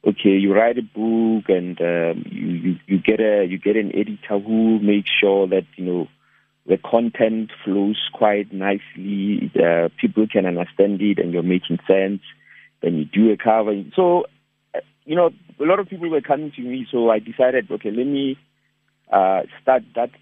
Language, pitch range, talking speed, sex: English, 100-120 Hz, 180 wpm, male